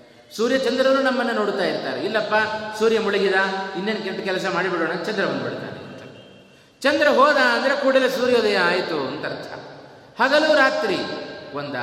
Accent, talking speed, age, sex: native, 125 wpm, 30-49, male